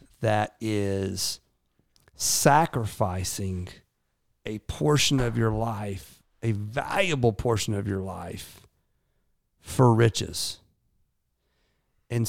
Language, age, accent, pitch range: English, 40-59, American, 100-130 Hz